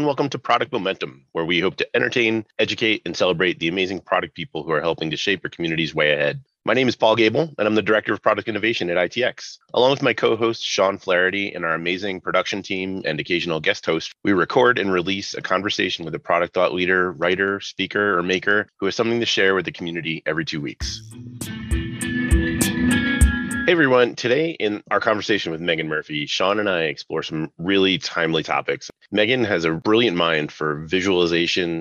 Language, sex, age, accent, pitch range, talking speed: English, male, 30-49, American, 80-110 Hz, 200 wpm